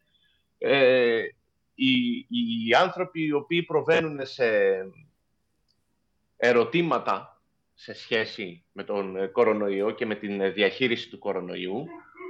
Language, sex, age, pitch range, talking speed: Greek, male, 30-49, 130-205 Hz, 100 wpm